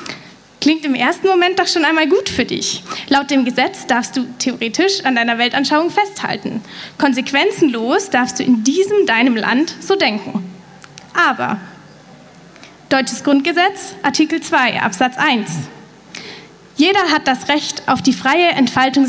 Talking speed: 140 wpm